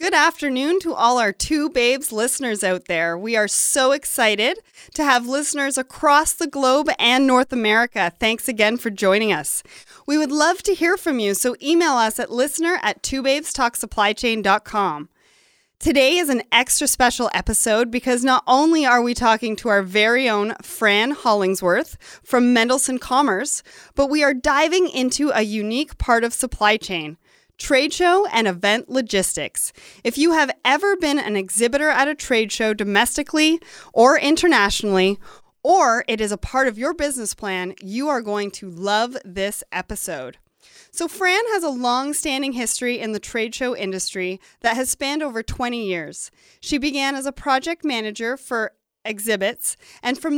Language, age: English, 30-49